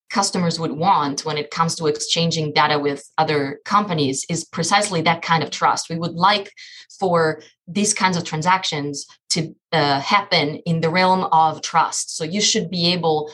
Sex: female